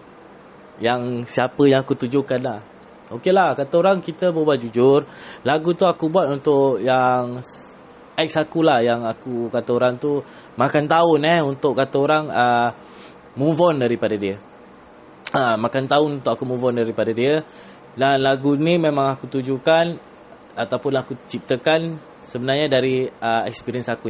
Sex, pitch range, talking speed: male, 130-190 Hz, 150 wpm